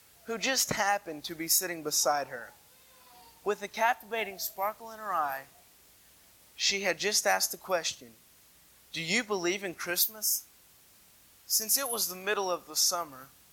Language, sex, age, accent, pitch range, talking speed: English, male, 20-39, American, 160-210 Hz, 150 wpm